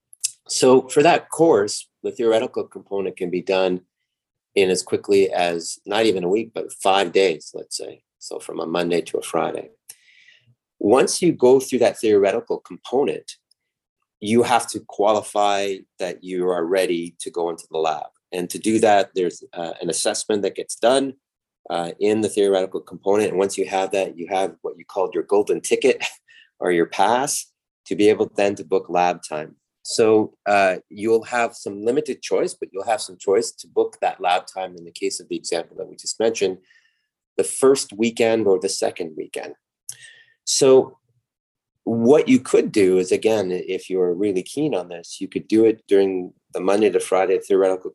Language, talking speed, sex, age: English, 185 wpm, male, 30-49